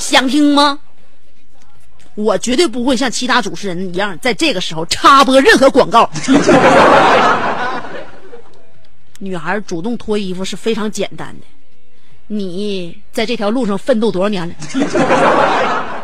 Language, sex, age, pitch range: Chinese, female, 30-49, 210-330 Hz